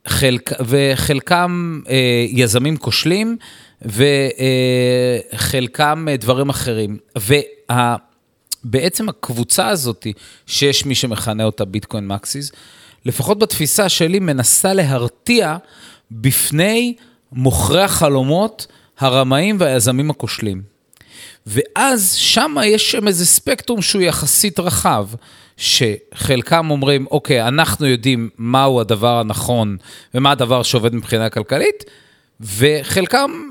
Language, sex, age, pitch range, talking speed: Hebrew, male, 30-49, 120-180 Hz, 90 wpm